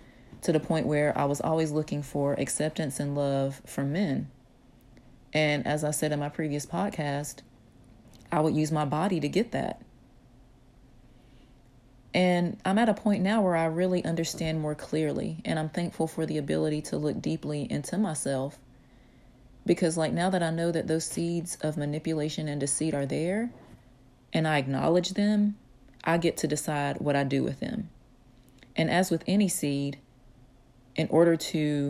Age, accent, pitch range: 30-49, American, 130-165 Hz